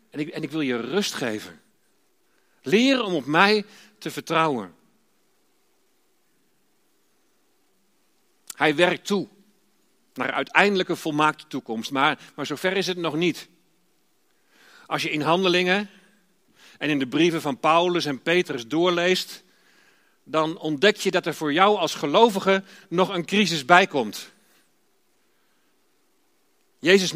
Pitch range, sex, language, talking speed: 155-220 Hz, male, Dutch, 125 wpm